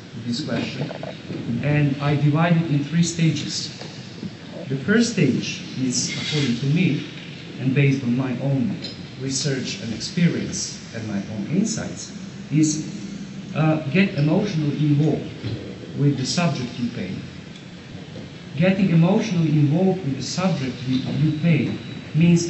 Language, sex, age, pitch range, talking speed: English, male, 50-69, 140-170 Hz, 125 wpm